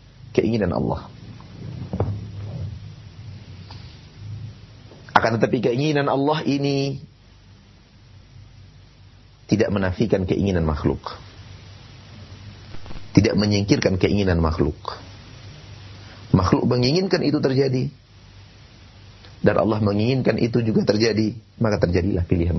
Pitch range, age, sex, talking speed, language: 100-135 Hz, 40-59, male, 75 wpm, Indonesian